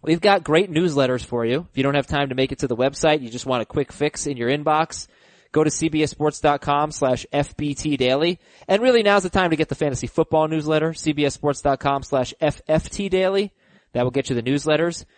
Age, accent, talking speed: 20-39, American, 200 wpm